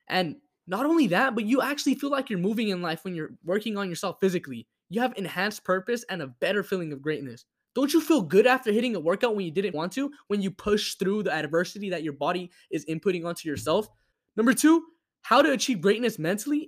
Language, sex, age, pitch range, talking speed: English, male, 10-29, 190-260 Hz, 225 wpm